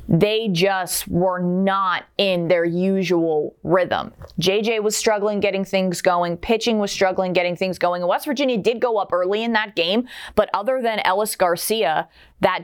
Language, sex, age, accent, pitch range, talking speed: English, female, 20-39, American, 175-210 Hz, 165 wpm